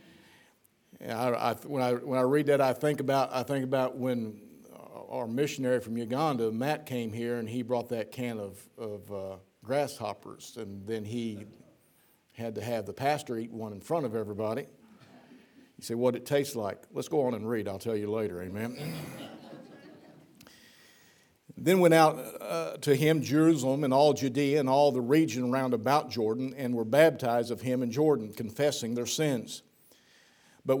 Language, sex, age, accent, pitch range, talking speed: English, male, 50-69, American, 120-145 Hz, 175 wpm